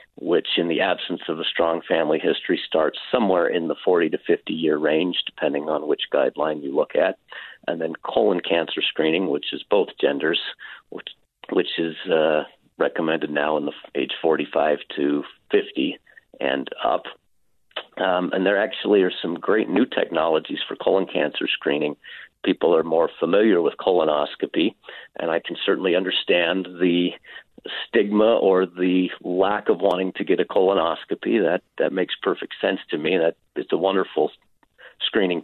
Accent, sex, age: American, male, 50-69